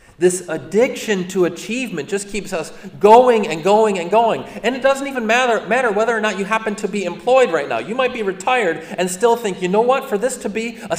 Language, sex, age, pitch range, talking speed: English, male, 40-59, 140-210 Hz, 235 wpm